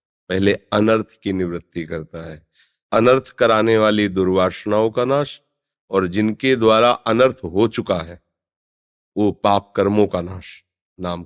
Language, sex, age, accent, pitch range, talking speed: Hindi, male, 40-59, native, 90-125 Hz, 135 wpm